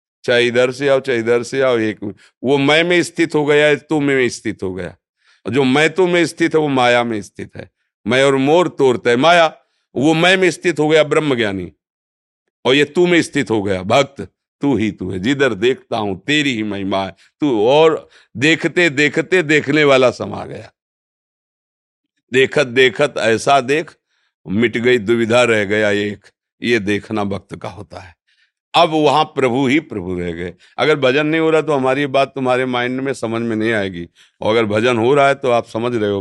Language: Hindi